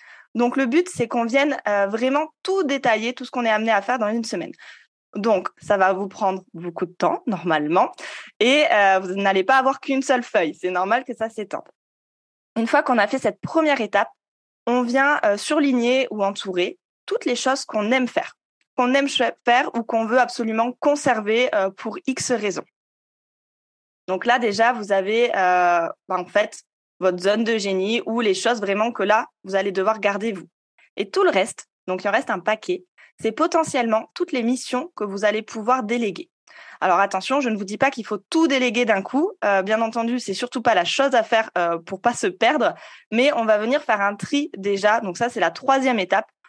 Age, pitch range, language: 20-39, 205-270 Hz, French